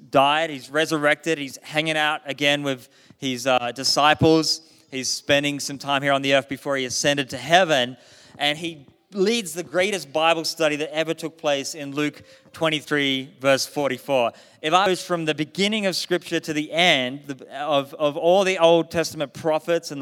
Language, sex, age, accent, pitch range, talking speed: English, male, 20-39, Australian, 140-165 Hz, 180 wpm